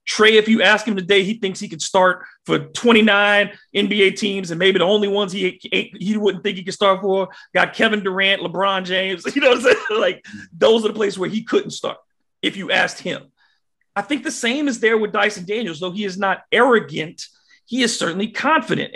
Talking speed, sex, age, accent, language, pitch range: 220 wpm, male, 40-59, American, English, 185-225 Hz